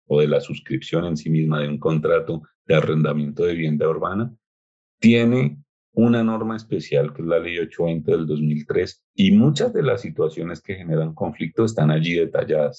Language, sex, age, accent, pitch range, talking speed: Spanish, male, 30-49, Colombian, 75-90 Hz, 175 wpm